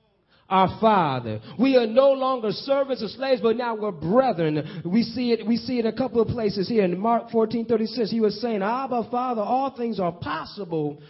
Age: 30-49